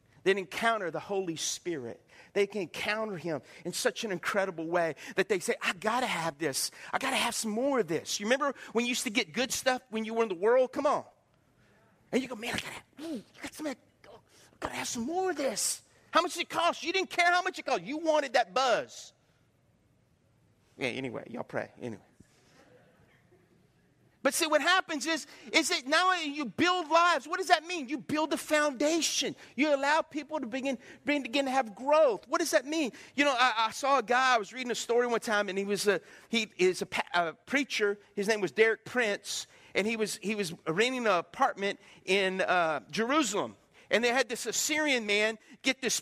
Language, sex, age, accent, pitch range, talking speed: English, male, 40-59, American, 210-305 Hz, 205 wpm